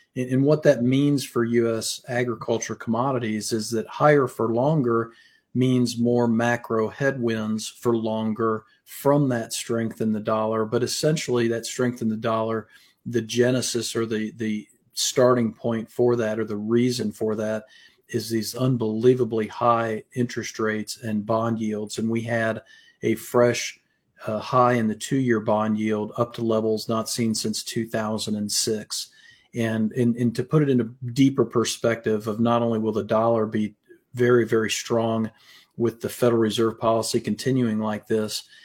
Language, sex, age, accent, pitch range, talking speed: English, male, 40-59, American, 110-120 Hz, 160 wpm